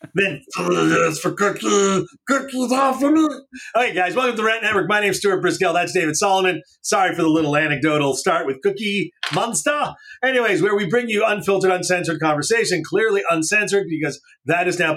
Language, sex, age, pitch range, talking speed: English, male, 30-49, 170-250 Hz, 170 wpm